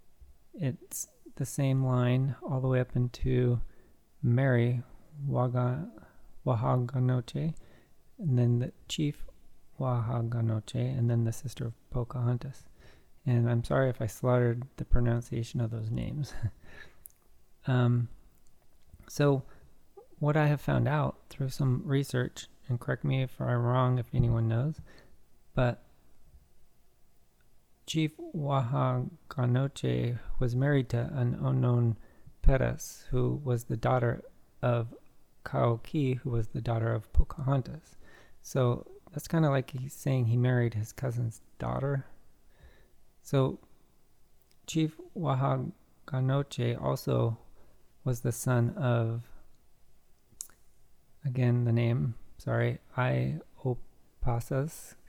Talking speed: 105 wpm